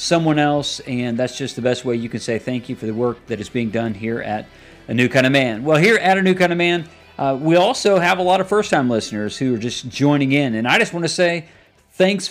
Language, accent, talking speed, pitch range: English, American, 275 wpm, 130-170 Hz